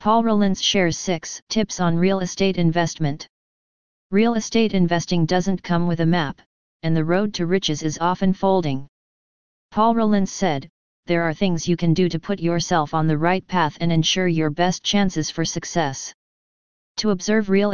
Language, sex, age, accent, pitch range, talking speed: English, female, 40-59, American, 165-190 Hz, 175 wpm